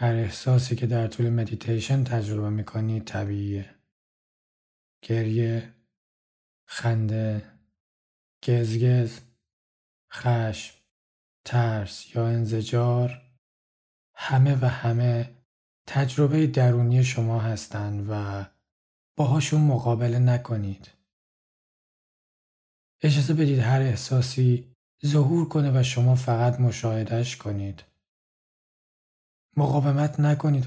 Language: Persian